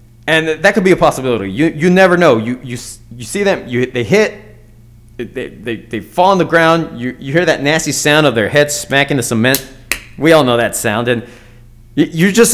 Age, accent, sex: 30-49, American, male